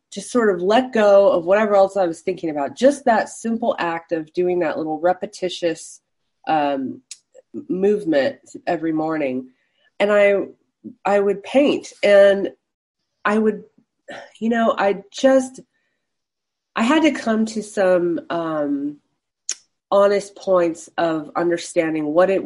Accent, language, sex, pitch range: American, English, female, 165-215 Hz